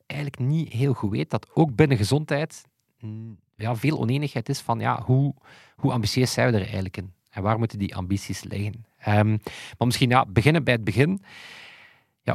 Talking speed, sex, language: 185 wpm, male, Dutch